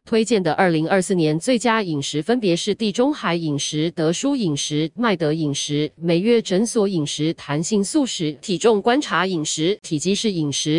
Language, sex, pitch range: Chinese, female, 160-230 Hz